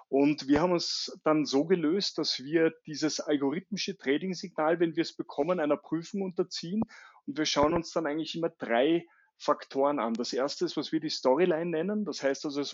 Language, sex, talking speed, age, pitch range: German, male, 195 wpm, 30-49, 145-180 Hz